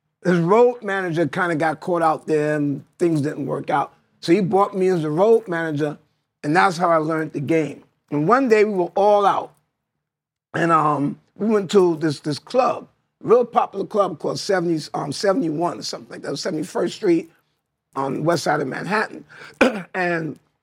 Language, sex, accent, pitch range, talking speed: English, male, American, 170-240 Hz, 190 wpm